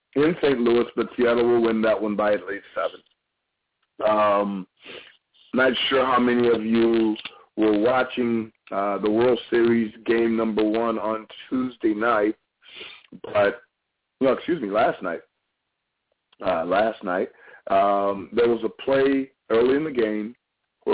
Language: English